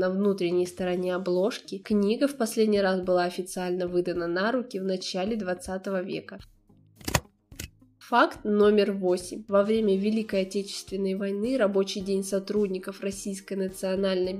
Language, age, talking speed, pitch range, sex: Russian, 20-39, 125 wpm, 185-210 Hz, female